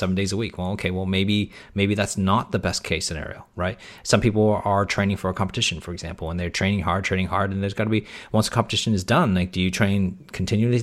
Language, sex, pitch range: English, male, 95-105 Hz